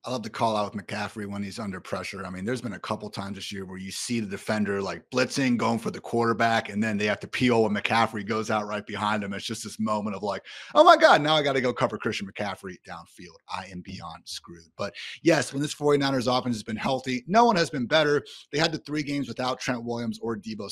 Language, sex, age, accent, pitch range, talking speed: English, male, 30-49, American, 110-155 Hz, 260 wpm